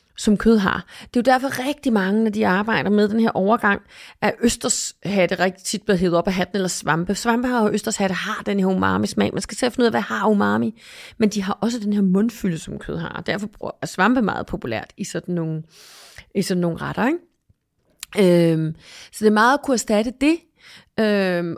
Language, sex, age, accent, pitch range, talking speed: Danish, female, 30-49, native, 185-245 Hz, 215 wpm